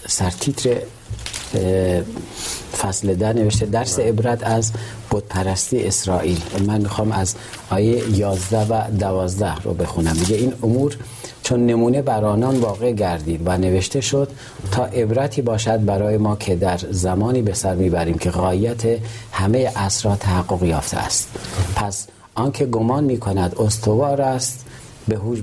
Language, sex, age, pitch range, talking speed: Persian, male, 40-59, 95-120 Hz, 135 wpm